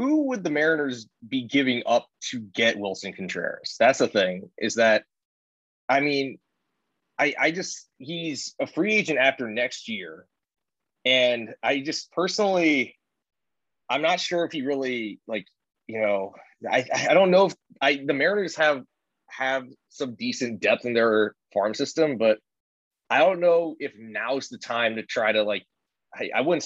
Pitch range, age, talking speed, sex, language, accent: 110-155 Hz, 20-39, 165 wpm, male, English, American